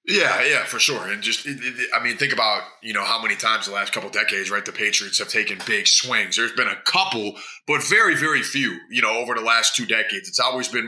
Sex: male